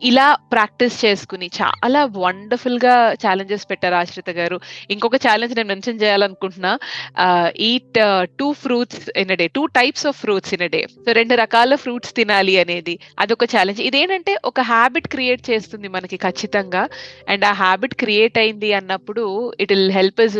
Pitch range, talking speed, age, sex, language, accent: 195-250 Hz, 140 wpm, 20-39, female, Telugu, native